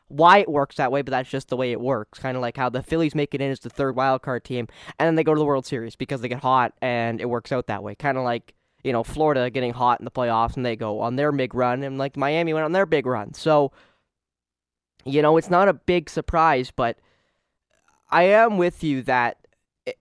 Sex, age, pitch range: male, 10-29, 125-155 Hz